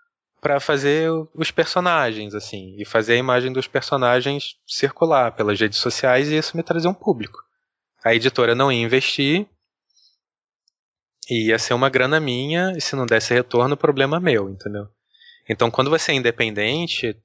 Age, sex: 20-39, male